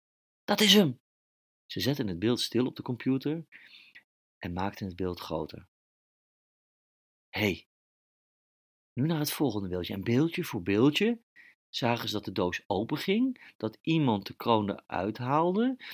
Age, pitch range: 40-59, 90-130 Hz